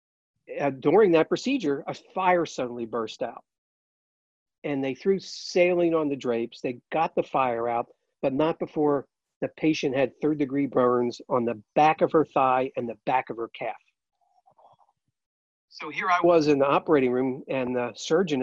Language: English